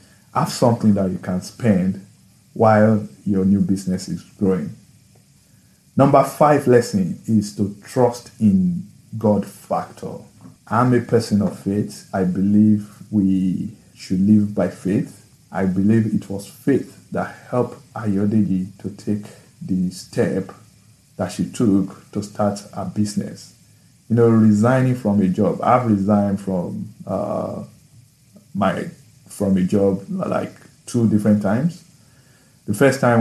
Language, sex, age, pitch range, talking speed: English, male, 50-69, 100-115 Hz, 130 wpm